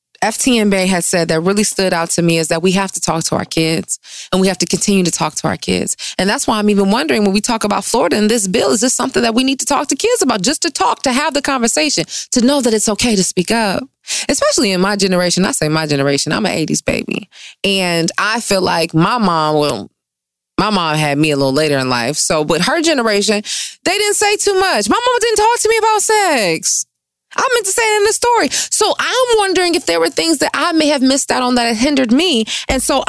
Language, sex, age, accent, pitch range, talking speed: English, female, 20-39, American, 180-270 Hz, 255 wpm